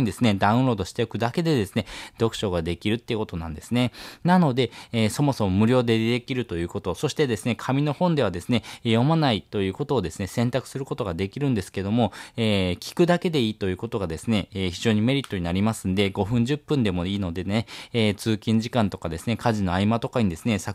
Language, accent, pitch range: Japanese, native, 100-130 Hz